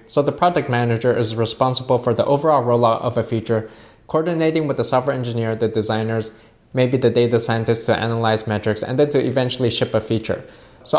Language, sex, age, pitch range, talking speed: English, male, 20-39, 115-135 Hz, 190 wpm